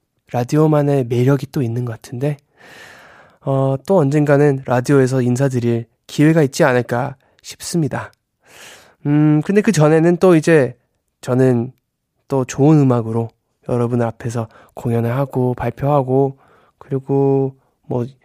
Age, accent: 20-39, native